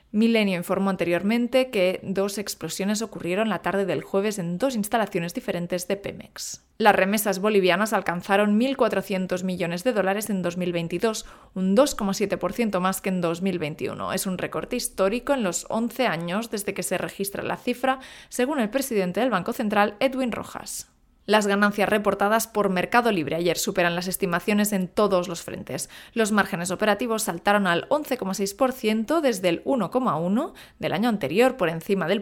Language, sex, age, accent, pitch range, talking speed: Spanish, female, 20-39, Spanish, 180-220 Hz, 155 wpm